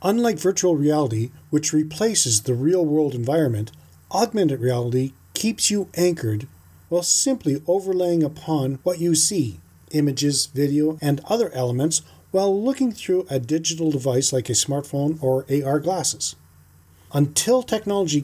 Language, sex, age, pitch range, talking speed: English, male, 40-59, 125-180 Hz, 130 wpm